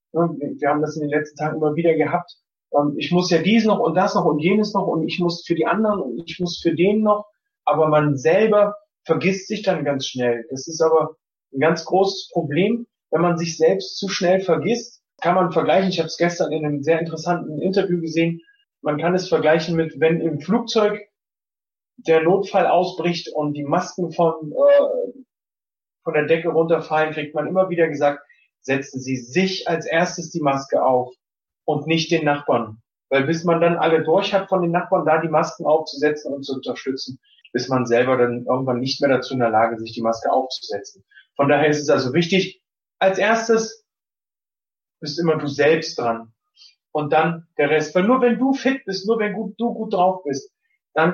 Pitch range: 150-190 Hz